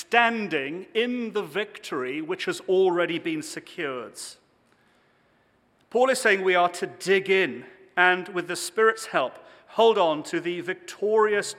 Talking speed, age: 140 wpm, 40-59